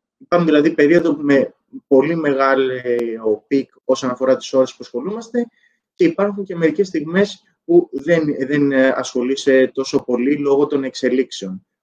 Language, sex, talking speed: Greek, male, 135 wpm